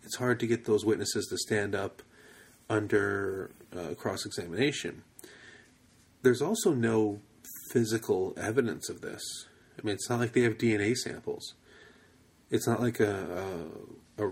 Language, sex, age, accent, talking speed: English, male, 30-49, American, 140 wpm